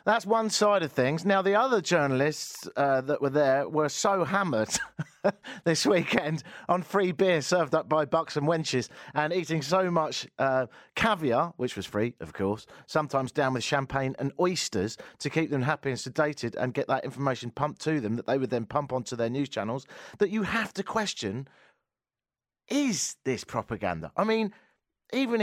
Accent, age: British, 40-59